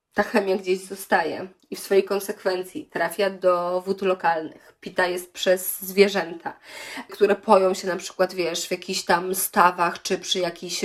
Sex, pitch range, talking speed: female, 190-235 Hz, 160 wpm